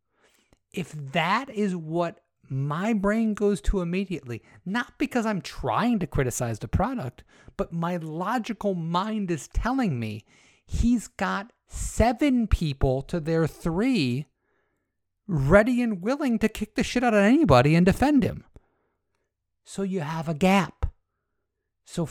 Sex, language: male, English